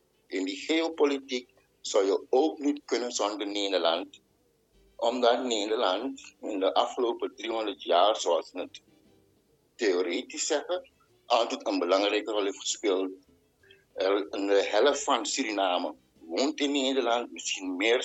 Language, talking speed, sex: Dutch, 125 wpm, male